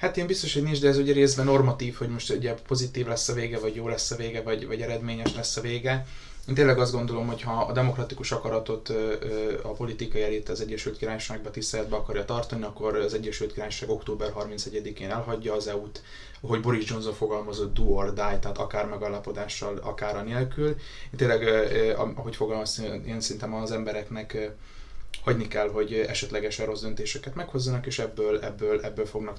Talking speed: 180 wpm